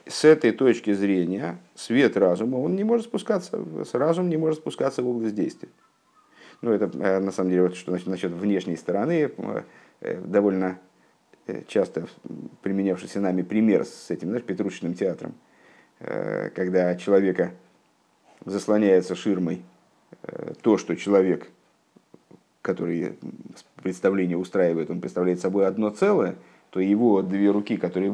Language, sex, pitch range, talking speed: Russian, male, 95-110 Hz, 120 wpm